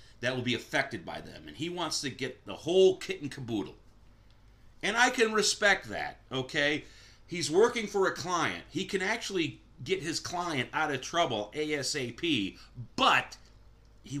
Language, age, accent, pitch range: English, 40-59, American, 110-150 Hz